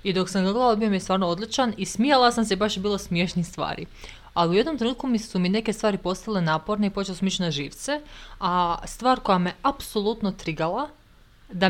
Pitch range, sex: 175-220 Hz, female